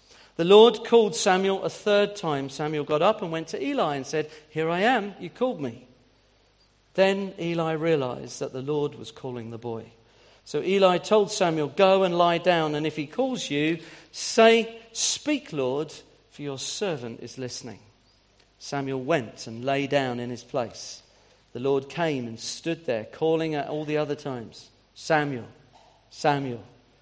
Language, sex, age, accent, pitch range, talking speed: English, male, 40-59, British, 125-175 Hz, 165 wpm